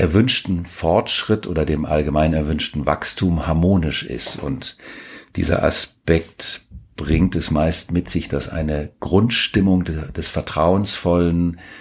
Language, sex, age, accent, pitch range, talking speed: German, male, 50-69, German, 80-100 Hz, 110 wpm